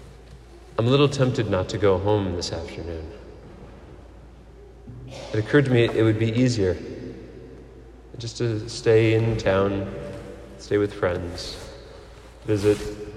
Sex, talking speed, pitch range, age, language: male, 125 wpm, 100-130 Hz, 40-59, English